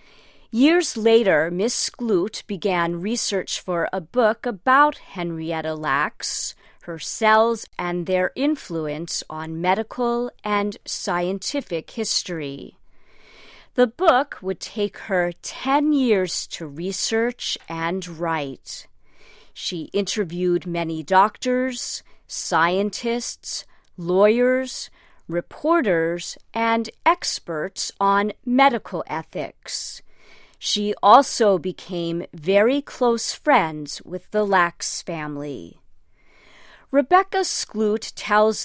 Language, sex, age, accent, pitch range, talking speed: English, female, 40-59, American, 170-240 Hz, 90 wpm